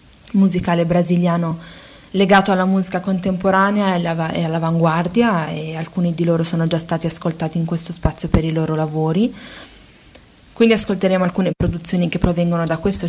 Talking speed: 140 wpm